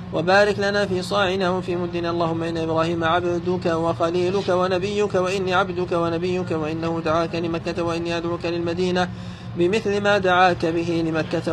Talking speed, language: 135 wpm, Arabic